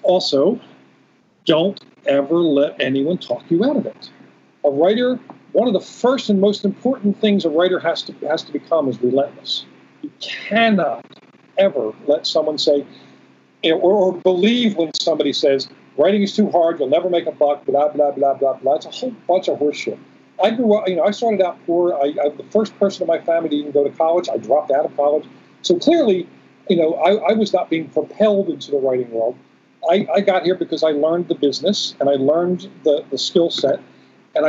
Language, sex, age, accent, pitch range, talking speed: English, male, 50-69, American, 140-200 Hz, 205 wpm